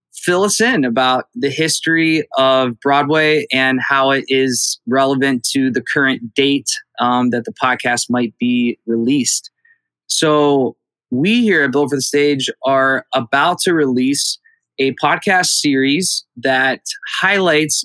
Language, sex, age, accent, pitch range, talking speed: English, male, 20-39, American, 130-155 Hz, 140 wpm